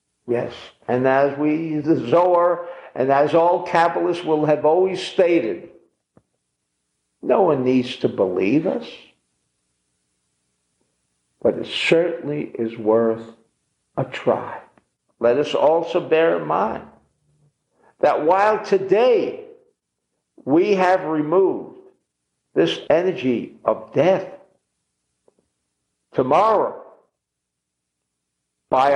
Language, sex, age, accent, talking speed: English, male, 60-79, American, 95 wpm